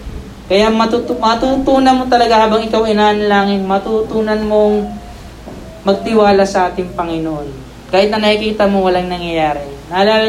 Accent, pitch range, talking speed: native, 170-220 Hz, 120 wpm